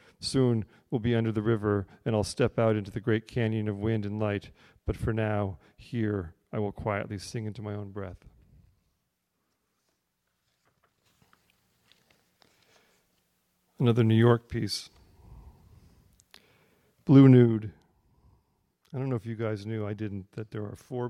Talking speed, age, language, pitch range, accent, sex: 140 wpm, 50-69, English, 105-125 Hz, American, male